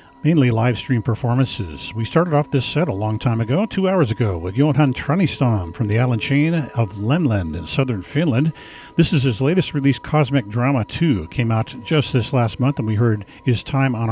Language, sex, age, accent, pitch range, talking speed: English, male, 50-69, American, 110-145 Hz, 205 wpm